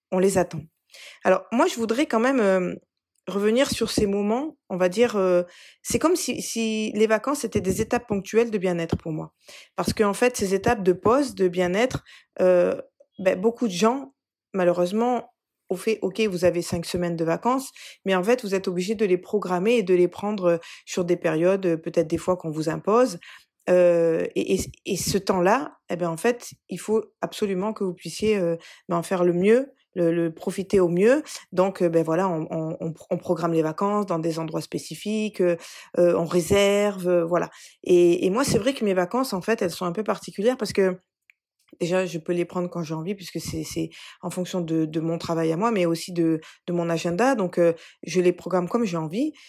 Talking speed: 215 wpm